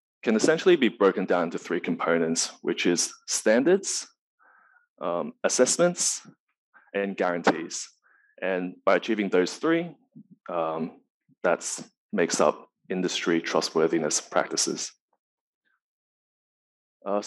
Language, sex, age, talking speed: English, male, 20-39, 95 wpm